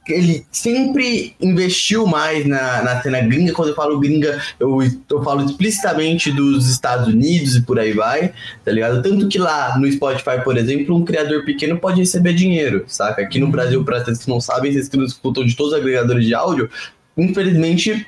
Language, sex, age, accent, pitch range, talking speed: Portuguese, male, 20-39, Brazilian, 125-175 Hz, 195 wpm